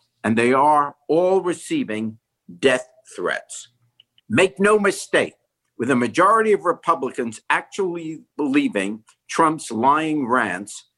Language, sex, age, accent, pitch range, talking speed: English, male, 50-69, American, 125-185 Hz, 110 wpm